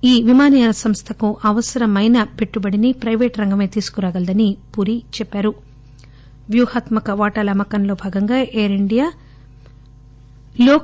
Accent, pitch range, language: Indian, 200-235 Hz, English